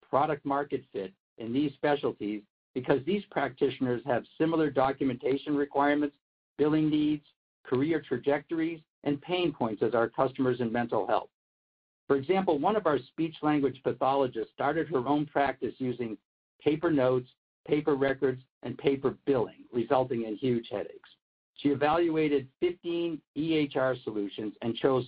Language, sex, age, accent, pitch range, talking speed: English, male, 60-79, American, 125-155 Hz, 135 wpm